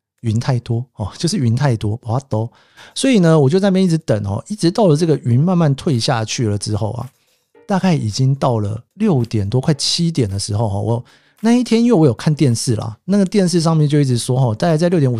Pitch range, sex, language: 115-160 Hz, male, Chinese